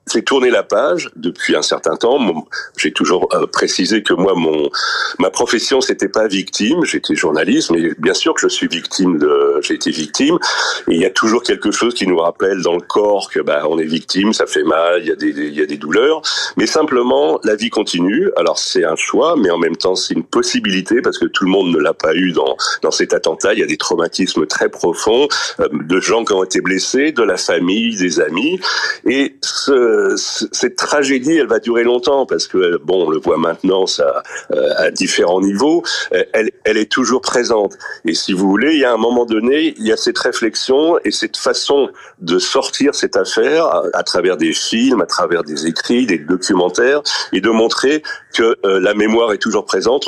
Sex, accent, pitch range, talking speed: male, French, 305-445 Hz, 205 wpm